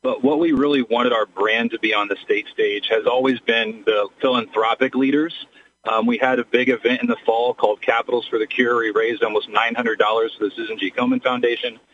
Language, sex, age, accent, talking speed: English, male, 40-59, American, 210 wpm